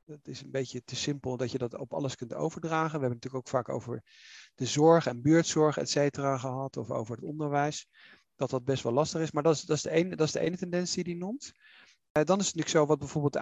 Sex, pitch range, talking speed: male, 135-165 Hz, 270 wpm